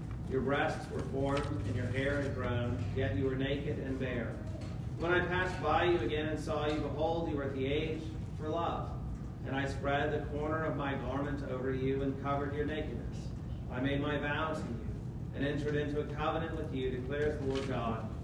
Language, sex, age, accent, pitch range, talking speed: English, male, 40-59, American, 125-150 Hz, 205 wpm